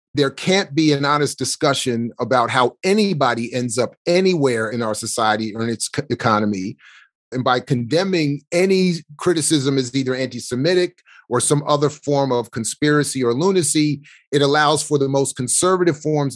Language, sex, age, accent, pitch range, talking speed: English, male, 30-49, American, 130-165 Hz, 155 wpm